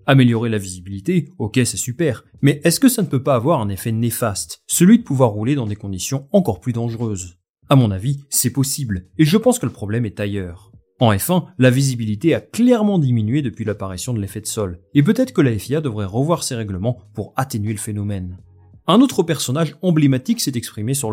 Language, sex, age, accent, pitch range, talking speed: French, male, 30-49, French, 105-155 Hz, 205 wpm